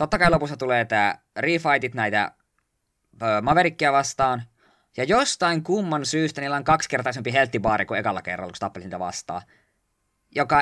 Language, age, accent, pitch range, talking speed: Finnish, 20-39, native, 110-145 Hz, 135 wpm